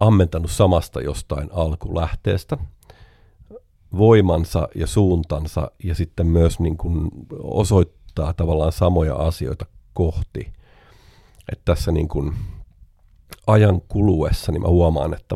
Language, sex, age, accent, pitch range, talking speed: Finnish, male, 50-69, native, 80-95 Hz, 105 wpm